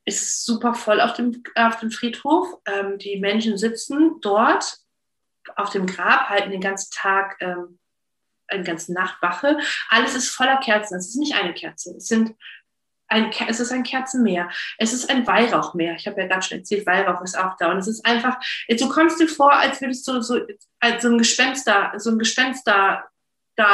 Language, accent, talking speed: German, German, 195 wpm